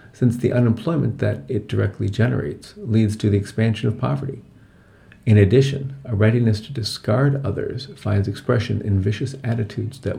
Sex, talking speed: male, 155 wpm